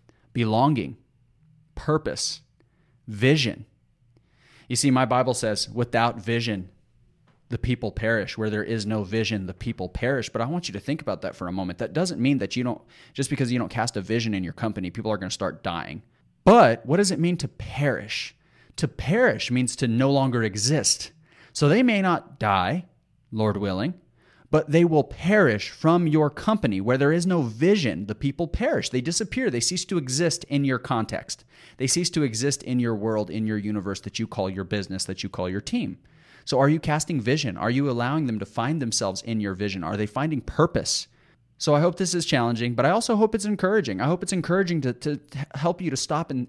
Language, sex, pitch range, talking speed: English, male, 110-155 Hz, 210 wpm